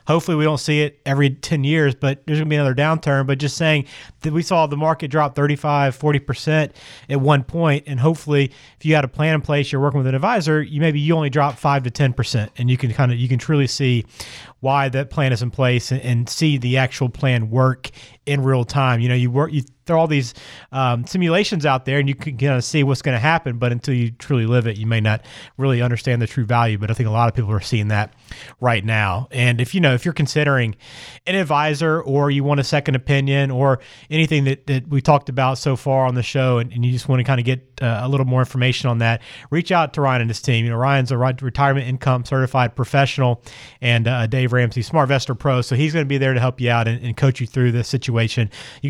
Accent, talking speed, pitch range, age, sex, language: American, 255 wpm, 125-145 Hz, 30-49, male, English